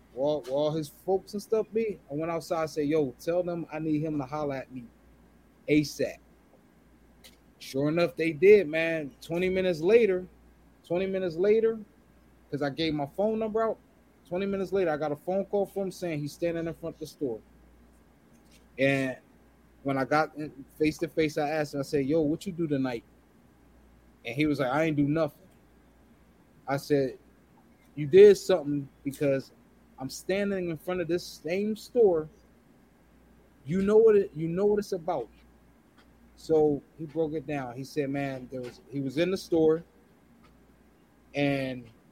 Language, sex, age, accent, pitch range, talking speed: English, male, 20-39, American, 140-185 Hz, 175 wpm